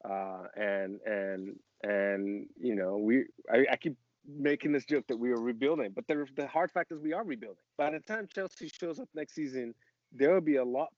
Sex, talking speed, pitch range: male, 215 wpm, 110-145 Hz